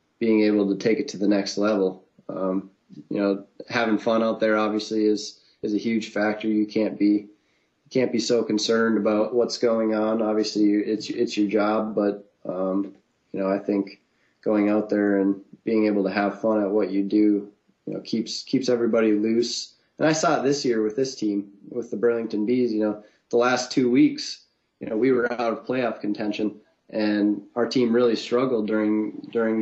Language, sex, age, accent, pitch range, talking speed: English, male, 20-39, American, 105-120 Hz, 195 wpm